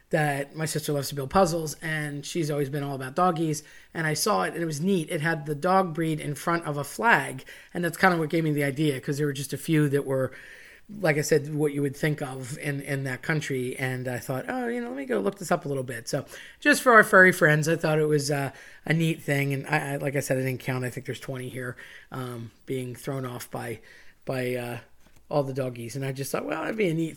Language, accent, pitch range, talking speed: English, American, 135-165 Hz, 270 wpm